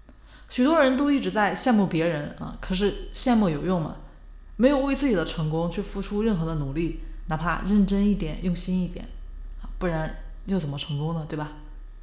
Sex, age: female, 20-39